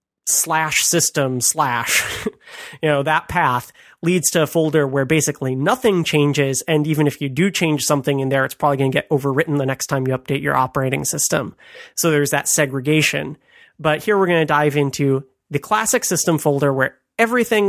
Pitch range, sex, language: 140-165 Hz, male, English